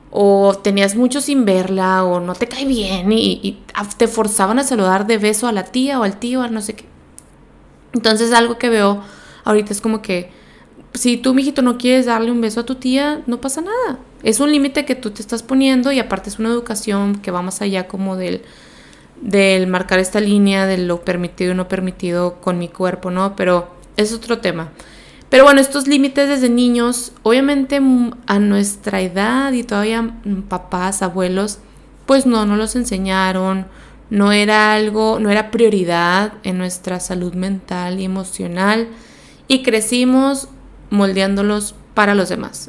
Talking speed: 175 wpm